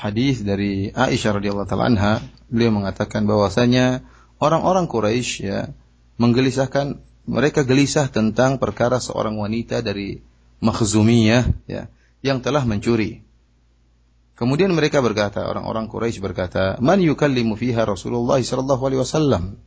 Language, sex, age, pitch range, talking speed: Malay, male, 30-49, 100-135 Hz, 115 wpm